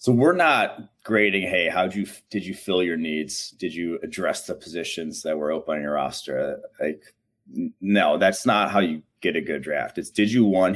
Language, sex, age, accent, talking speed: English, male, 30-49, American, 210 wpm